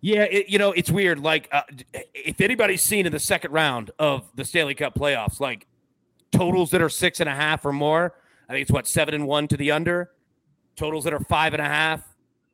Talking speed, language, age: 225 wpm, English, 30-49